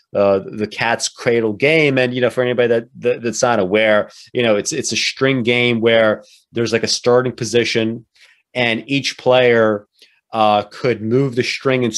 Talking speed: 185 wpm